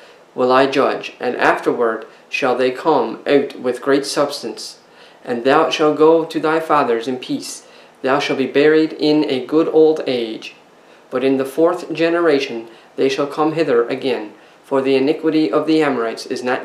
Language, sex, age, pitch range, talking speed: English, male, 40-59, 130-155 Hz, 175 wpm